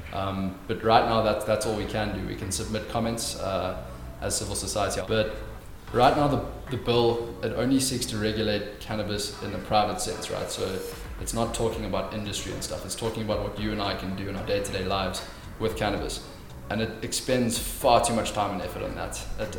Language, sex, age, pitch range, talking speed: English, male, 20-39, 100-115 Hz, 210 wpm